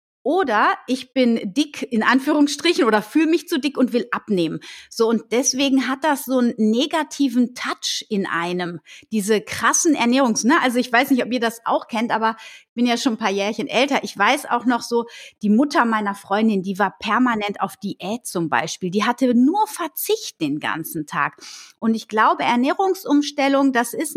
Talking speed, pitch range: 185 wpm, 215-280 Hz